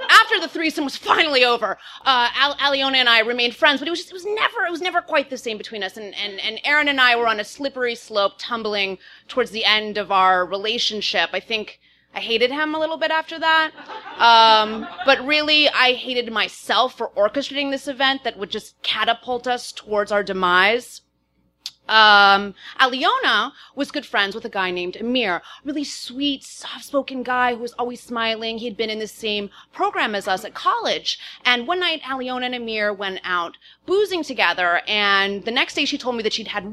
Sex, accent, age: female, American, 30-49